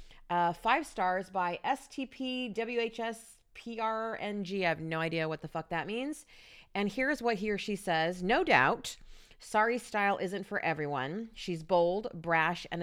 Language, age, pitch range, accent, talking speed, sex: English, 30-49, 175-250 Hz, American, 155 wpm, female